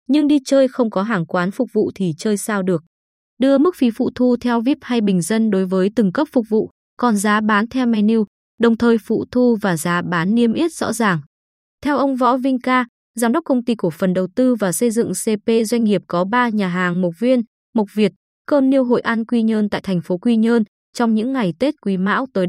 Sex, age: female, 20-39